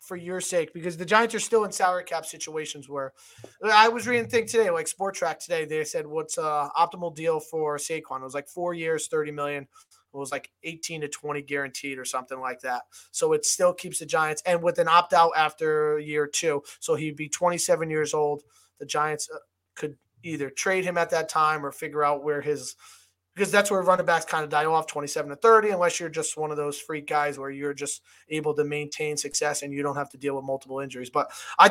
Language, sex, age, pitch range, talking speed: English, male, 20-39, 150-215 Hz, 230 wpm